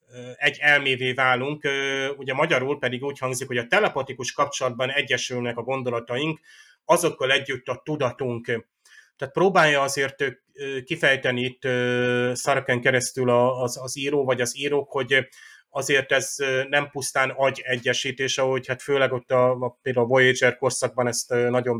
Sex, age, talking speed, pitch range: male, 30-49, 140 wpm, 125-145 Hz